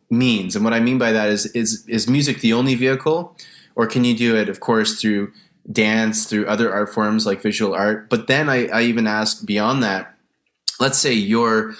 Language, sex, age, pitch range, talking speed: English, male, 20-39, 100-120 Hz, 210 wpm